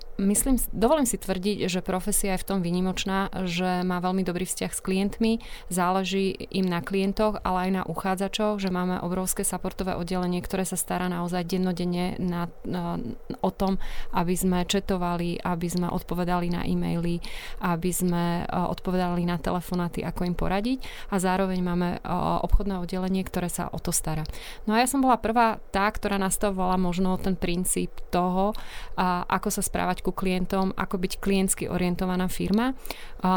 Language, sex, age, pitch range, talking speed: Slovak, female, 30-49, 175-195 Hz, 165 wpm